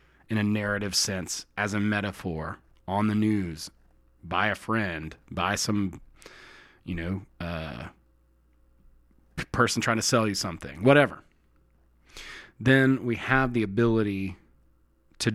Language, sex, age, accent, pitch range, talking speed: English, male, 30-49, American, 80-120 Hz, 120 wpm